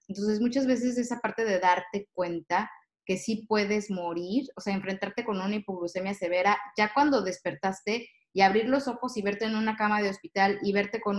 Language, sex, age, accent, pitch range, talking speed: Spanish, female, 20-39, Mexican, 190-225 Hz, 195 wpm